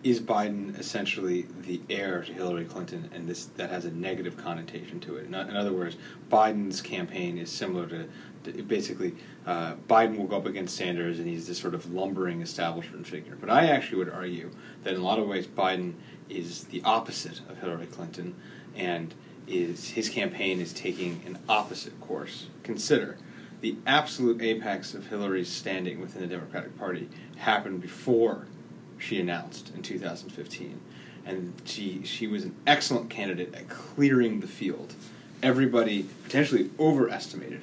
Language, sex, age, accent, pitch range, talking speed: English, male, 30-49, American, 90-115 Hz, 160 wpm